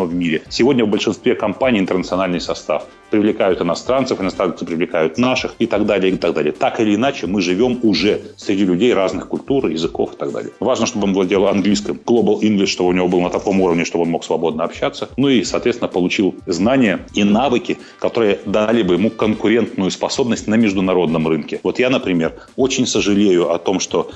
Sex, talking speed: male, 190 wpm